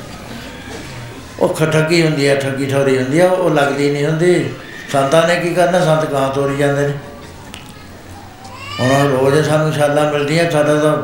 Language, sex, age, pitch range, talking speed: Punjabi, male, 60-79, 135-165 Hz, 145 wpm